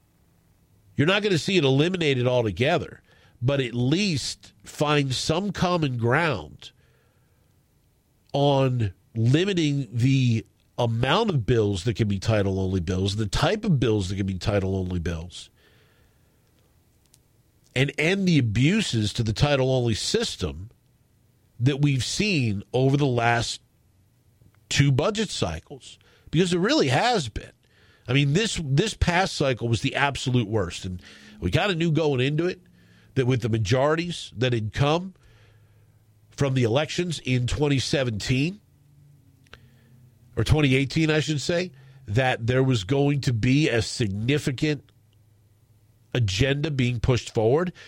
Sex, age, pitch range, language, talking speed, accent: male, 50-69, 110-145 Hz, English, 130 wpm, American